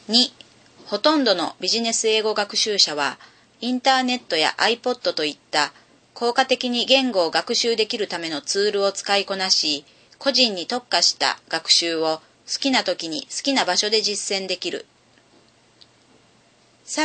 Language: Japanese